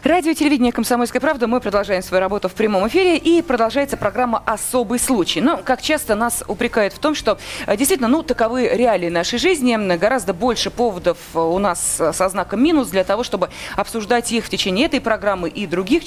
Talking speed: 185 wpm